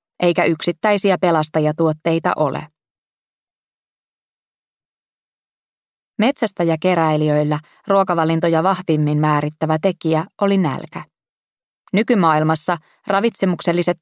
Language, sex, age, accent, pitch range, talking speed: Finnish, female, 20-39, native, 155-190 Hz, 65 wpm